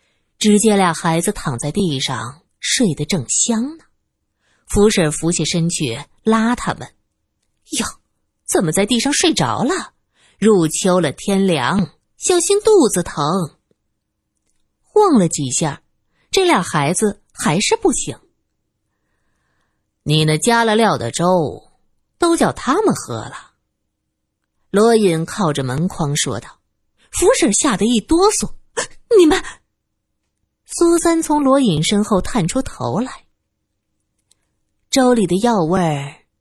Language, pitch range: Chinese, 155-250 Hz